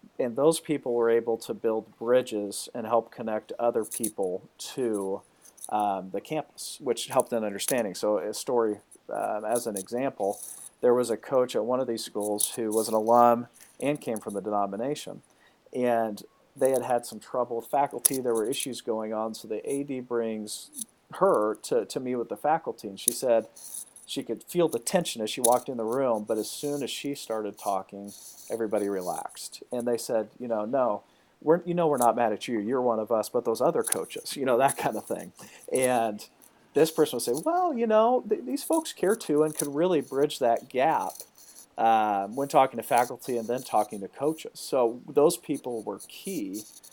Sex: male